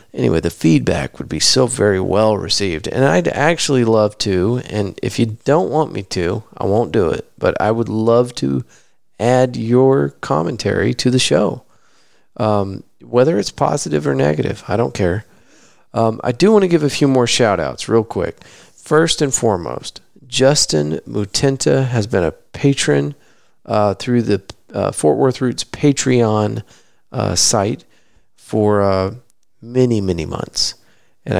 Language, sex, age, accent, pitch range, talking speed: English, male, 40-59, American, 100-125 Hz, 155 wpm